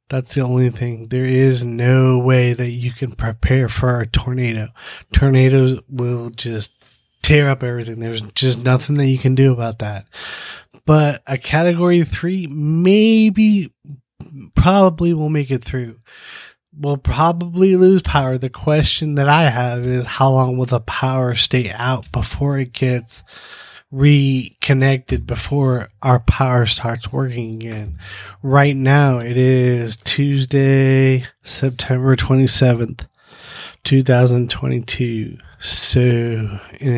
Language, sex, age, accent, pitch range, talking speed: English, male, 20-39, American, 120-140 Hz, 125 wpm